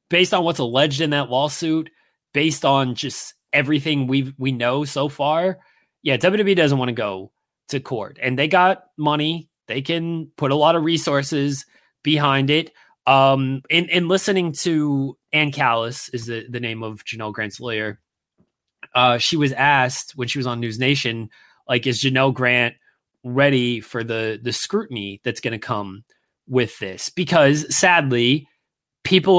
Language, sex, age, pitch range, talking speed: English, male, 20-39, 130-165 Hz, 165 wpm